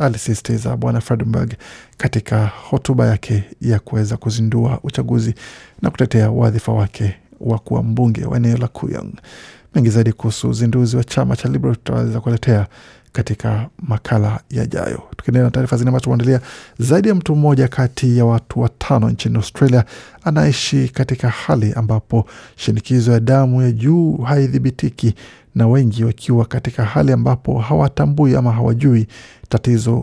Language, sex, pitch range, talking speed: Swahili, male, 110-130 Hz, 135 wpm